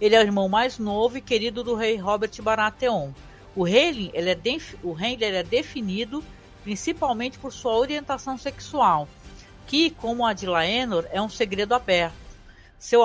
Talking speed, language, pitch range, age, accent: 165 wpm, Portuguese, 185-255 Hz, 60-79, Brazilian